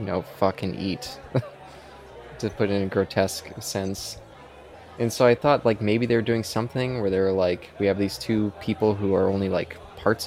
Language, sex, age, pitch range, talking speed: English, male, 20-39, 95-110 Hz, 185 wpm